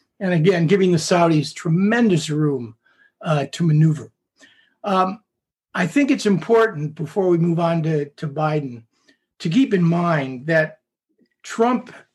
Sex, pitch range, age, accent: male, 155-195 Hz, 50-69, American